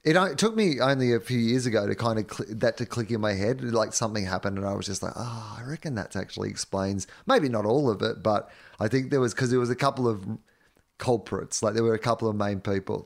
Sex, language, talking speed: male, English, 260 wpm